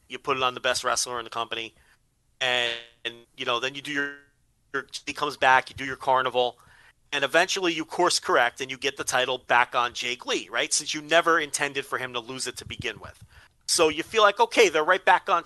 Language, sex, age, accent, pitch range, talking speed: English, male, 40-59, American, 130-155 Hz, 240 wpm